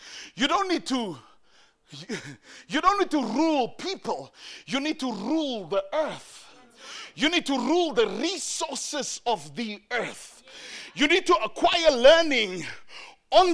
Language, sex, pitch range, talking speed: English, male, 225-330 Hz, 135 wpm